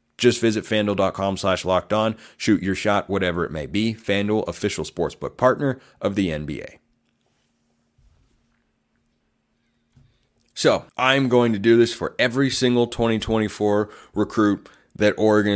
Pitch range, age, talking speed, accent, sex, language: 95-115 Hz, 30-49, 125 wpm, American, male, English